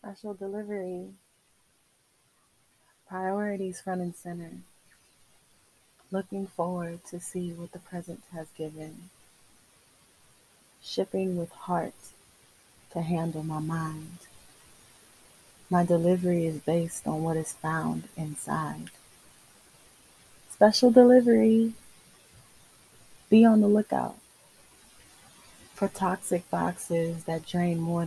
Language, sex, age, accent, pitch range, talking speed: English, female, 30-49, American, 160-190 Hz, 90 wpm